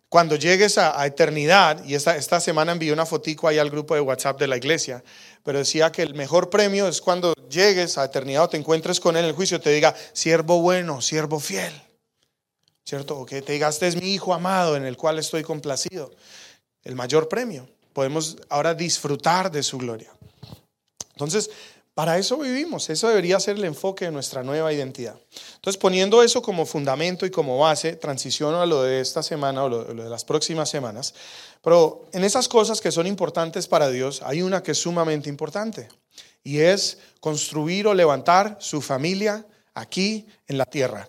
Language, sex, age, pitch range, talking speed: English, male, 30-49, 145-195 Hz, 185 wpm